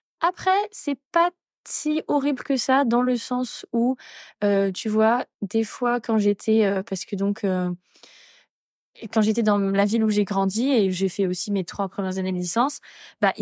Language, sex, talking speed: French, female, 190 wpm